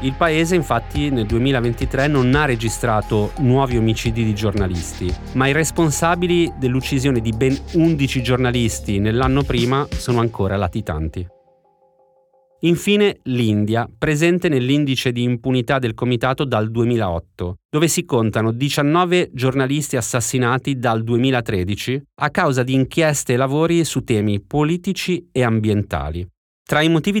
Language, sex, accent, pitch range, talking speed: Italian, male, native, 105-140 Hz, 125 wpm